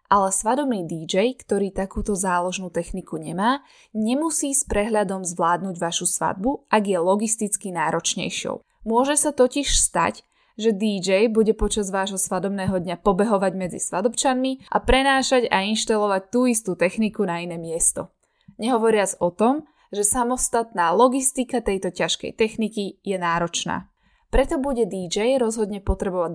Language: Slovak